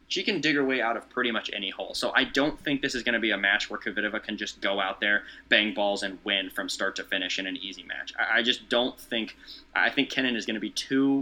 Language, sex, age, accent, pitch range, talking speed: English, male, 20-39, American, 105-130 Hz, 285 wpm